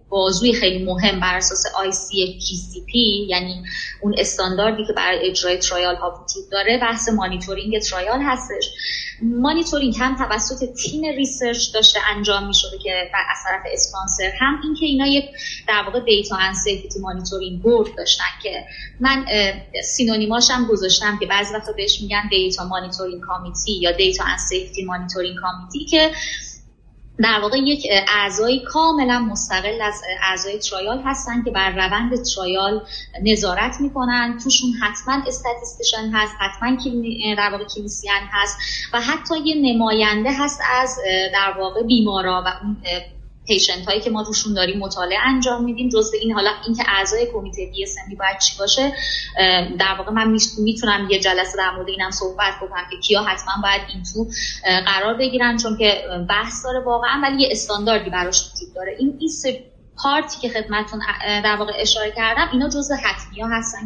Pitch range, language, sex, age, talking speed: 190-250 Hz, Persian, female, 20-39, 155 wpm